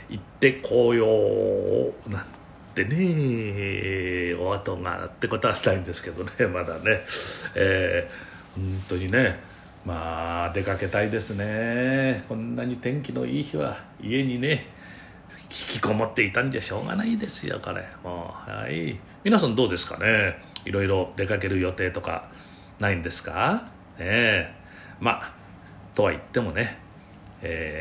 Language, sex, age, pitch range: Japanese, male, 40-59, 90-135 Hz